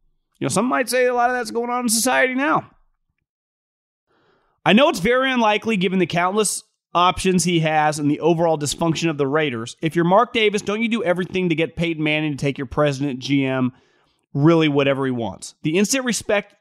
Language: English